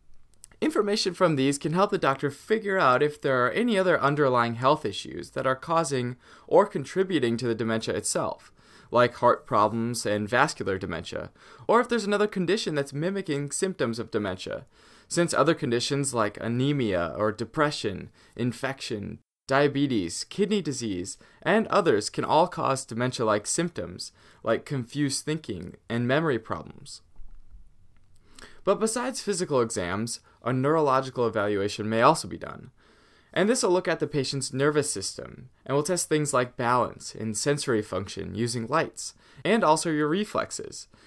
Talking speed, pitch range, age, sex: 150 wpm, 110-155 Hz, 20-39, male